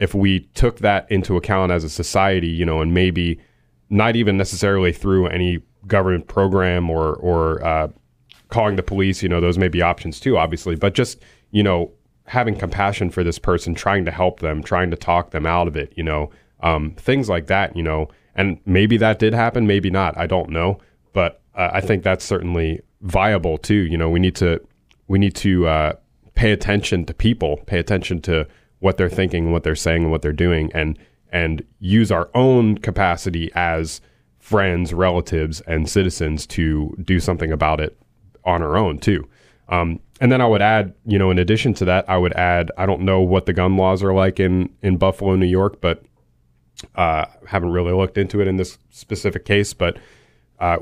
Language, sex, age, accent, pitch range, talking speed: English, male, 30-49, American, 85-100 Hz, 200 wpm